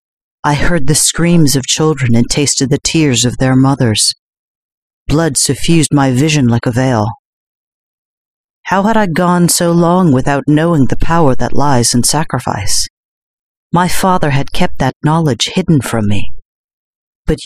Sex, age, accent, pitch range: female, 40-59, American, 130-165 Hz